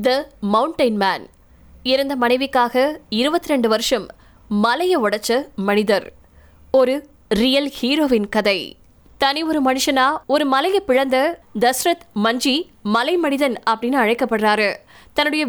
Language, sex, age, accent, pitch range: Tamil, female, 20-39, native, 235-295 Hz